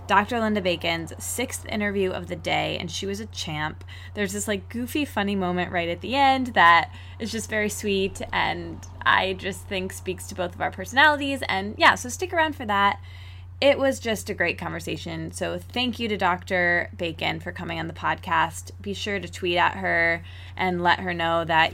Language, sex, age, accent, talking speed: English, female, 20-39, American, 200 wpm